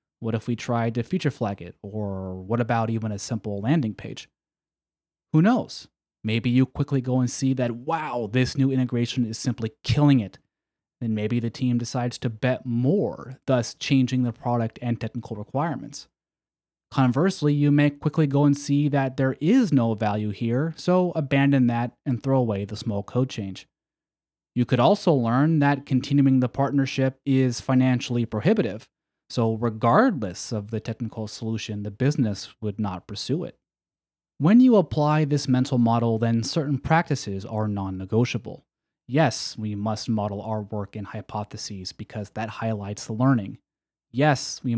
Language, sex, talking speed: English, male, 160 wpm